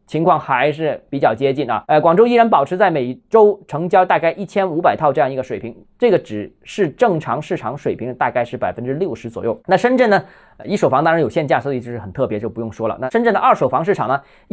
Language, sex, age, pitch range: Chinese, male, 20-39, 120-195 Hz